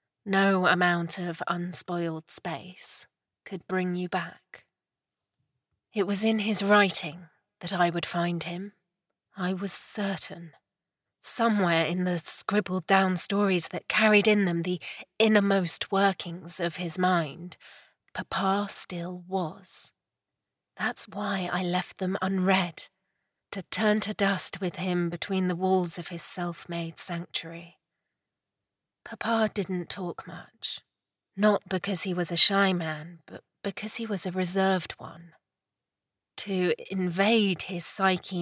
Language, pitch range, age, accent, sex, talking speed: English, 175-195 Hz, 30-49, British, female, 130 wpm